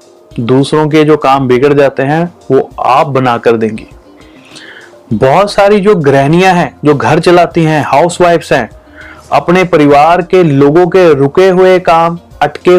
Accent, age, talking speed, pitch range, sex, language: native, 30-49, 150 wpm, 135-170 Hz, male, Hindi